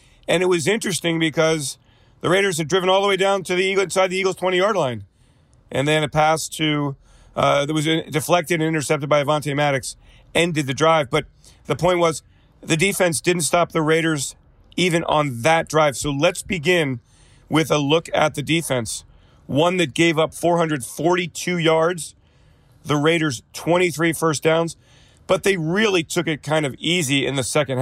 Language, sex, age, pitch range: English, male, 40-59, 135-170 Hz